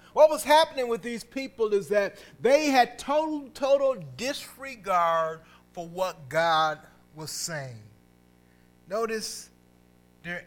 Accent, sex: American, male